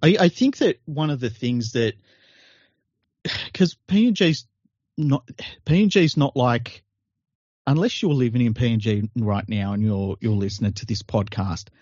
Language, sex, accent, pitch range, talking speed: English, male, Australian, 100-125 Hz, 145 wpm